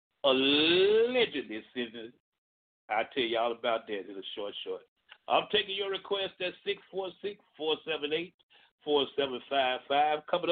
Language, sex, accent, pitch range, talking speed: English, male, American, 150-210 Hz, 105 wpm